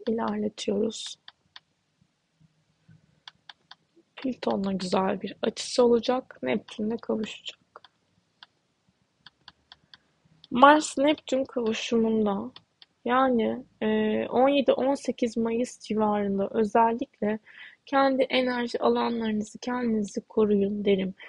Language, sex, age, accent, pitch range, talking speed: Turkish, female, 20-39, native, 200-245 Hz, 60 wpm